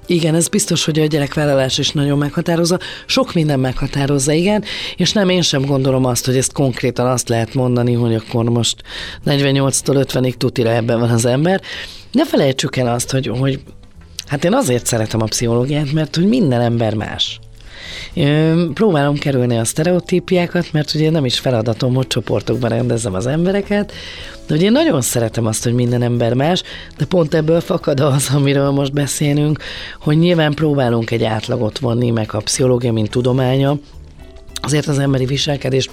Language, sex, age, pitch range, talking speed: Hungarian, female, 30-49, 120-160 Hz, 165 wpm